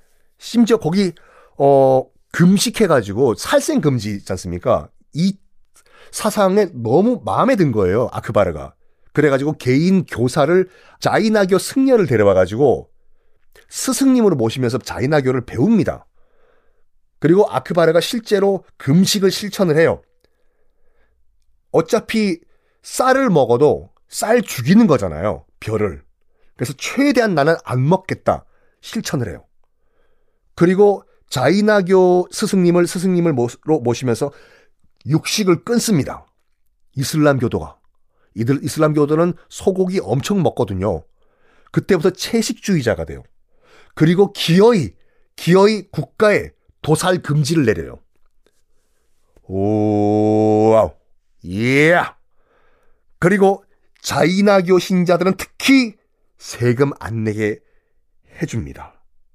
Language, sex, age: Korean, male, 40-59